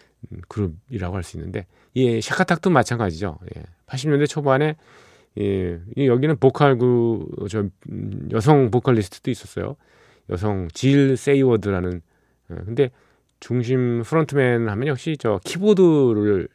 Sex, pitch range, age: male, 90-130 Hz, 40-59